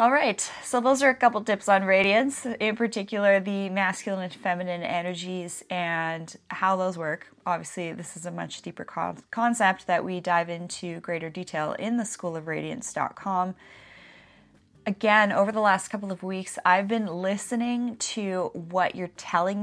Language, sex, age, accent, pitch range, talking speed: English, female, 30-49, American, 170-205 Hz, 150 wpm